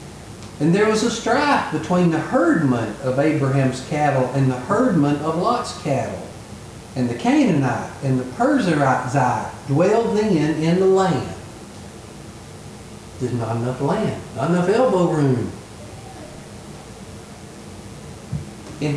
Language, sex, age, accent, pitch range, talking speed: English, male, 50-69, American, 120-175 Hz, 115 wpm